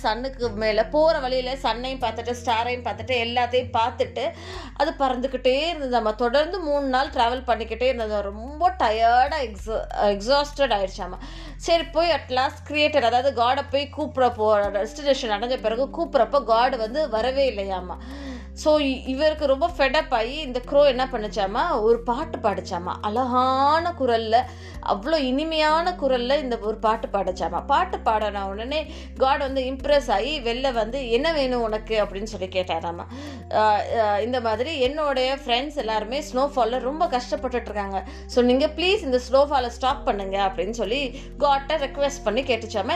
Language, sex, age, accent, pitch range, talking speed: Tamil, female, 20-39, native, 220-285 Hz, 140 wpm